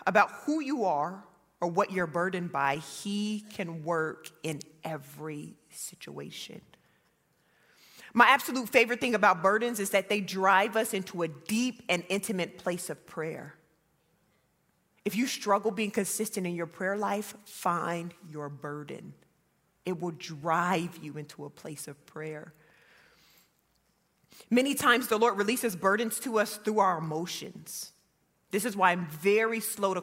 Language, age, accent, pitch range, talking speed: English, 30-49, American, 165-210 Hz, 145 wpm